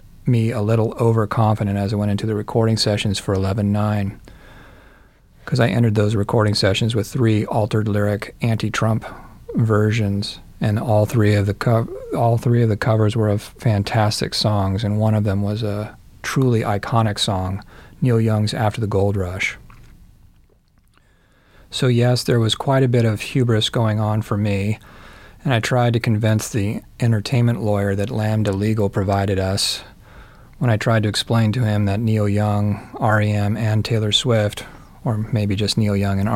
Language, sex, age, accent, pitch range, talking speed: English, male, 40-59, American, 100-115 Hz, 170 wpm